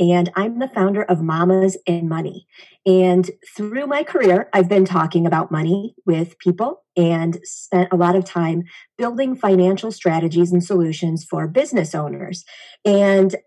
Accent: American